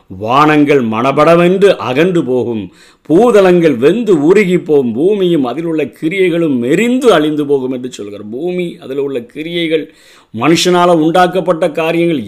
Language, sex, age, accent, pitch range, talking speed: Tamil, male, 50-69, native, 130-175 Hz, 110 wpm